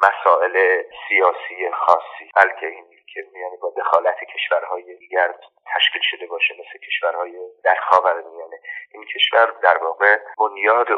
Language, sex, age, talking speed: Persian, male, 30-49, 125 wpm